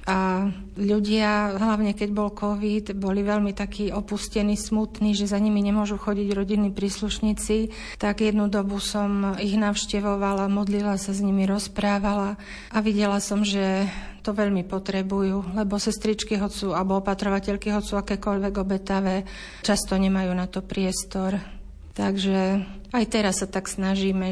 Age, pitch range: 40-59, 185-205 Hz